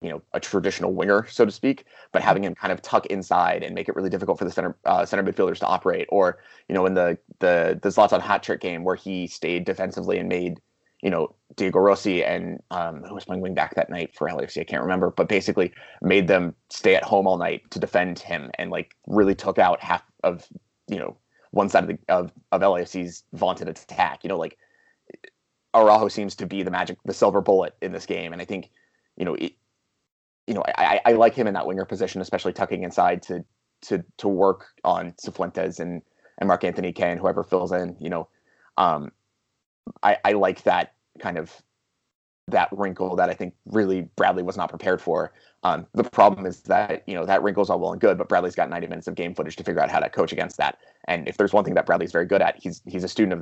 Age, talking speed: 20-39, 230 wpm